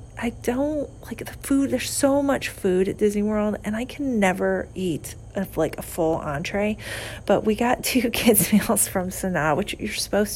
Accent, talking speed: American, 185 wpm